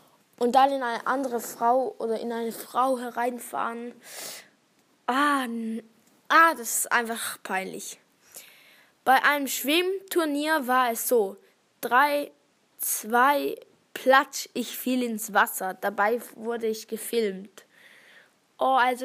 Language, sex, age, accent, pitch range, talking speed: German, female, 10-29, German, 225-265 Hz, 115 wpm